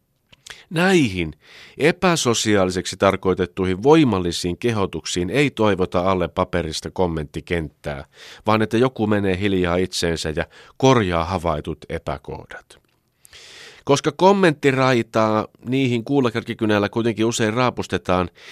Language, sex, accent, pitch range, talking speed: Finnish, male, native, 85-125 Hz, 90 wpm